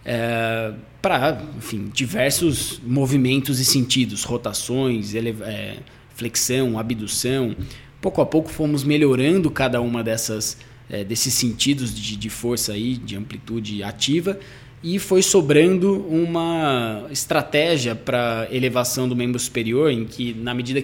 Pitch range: 115-150 Hz